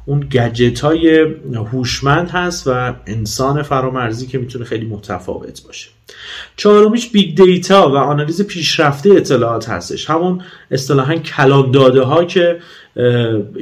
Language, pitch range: Persian, 115-155 Hz